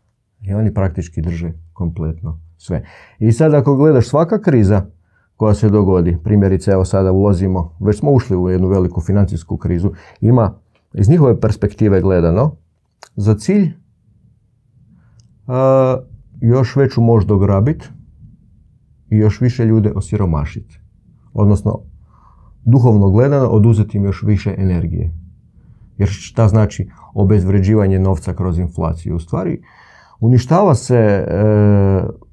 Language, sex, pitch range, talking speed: Croatian, male, 95-120 Hz, 115 wpm